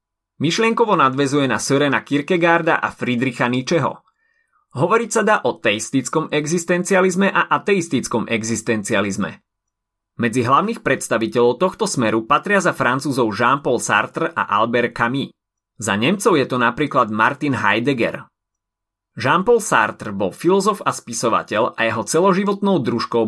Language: Slovak